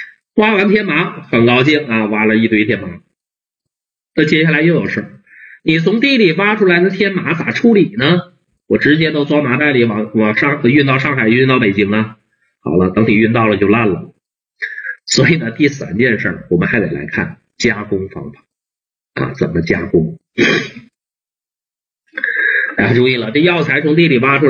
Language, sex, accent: Chinese, male, native